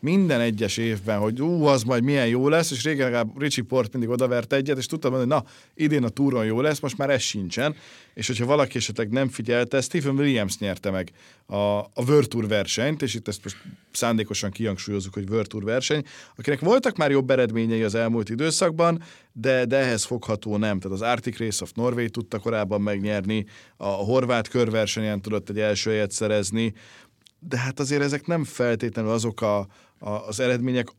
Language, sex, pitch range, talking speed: Hungarian, male, 105-130 Hz, 190 wpm